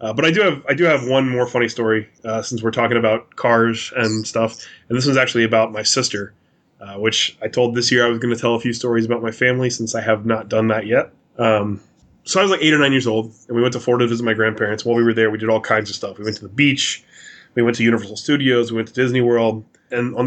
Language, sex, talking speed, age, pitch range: English, male, 285 wpm, 20-39, 110-125 Hz